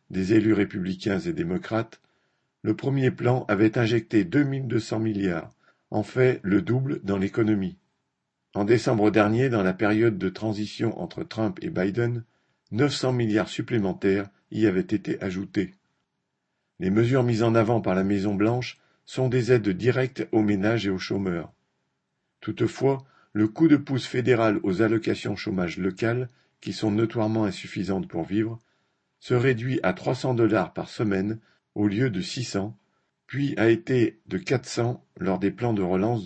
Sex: male